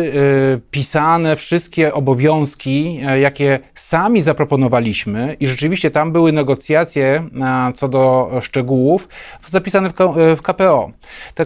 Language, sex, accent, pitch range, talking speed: Polish, male, native, 135-165 Hz, 95 wpm